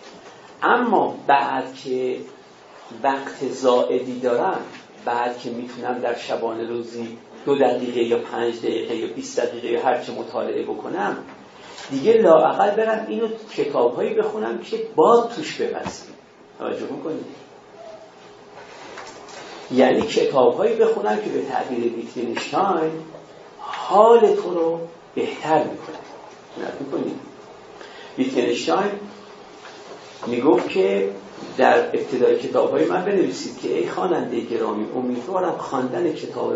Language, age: Persian, 50-69